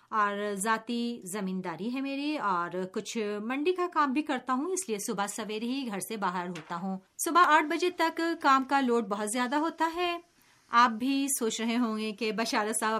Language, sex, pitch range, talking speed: Urdu, female, 205-280 Hz, 200 wpm